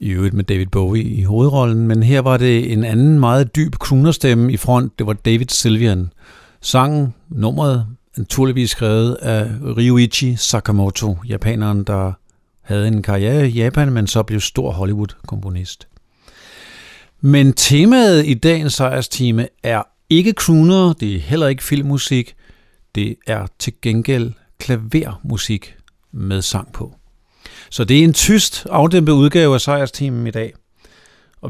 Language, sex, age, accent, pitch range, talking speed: Danish, male, 50-69, native, 110-140 Hz, 145 wpm